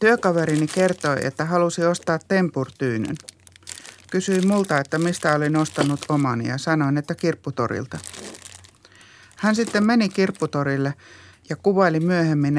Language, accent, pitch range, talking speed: Finnish, native, 145-235 Hz, 115 wpm